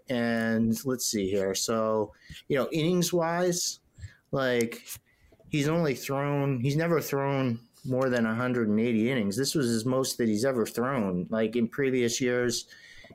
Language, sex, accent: English, male, American